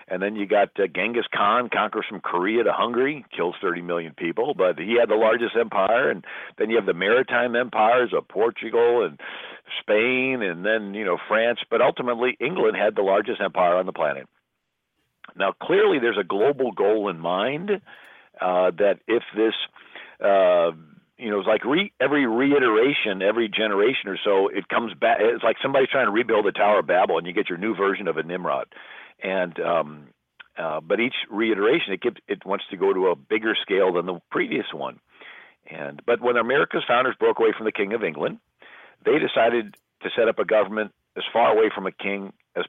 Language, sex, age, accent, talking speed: English, male, 50-69, American, 195 wpm